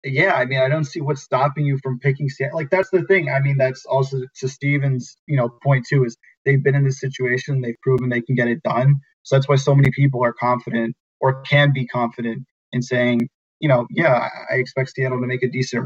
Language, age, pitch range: English, 20-39, 120-140 Hz